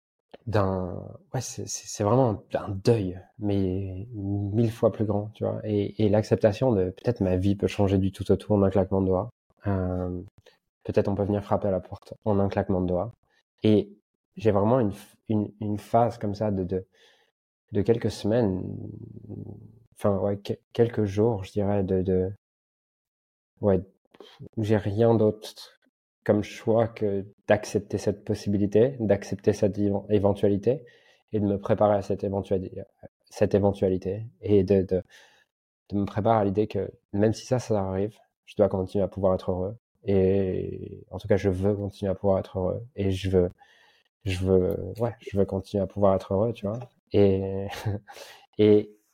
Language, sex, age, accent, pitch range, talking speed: French, male, 20-39, French, 95-110 Hz, 170 wpm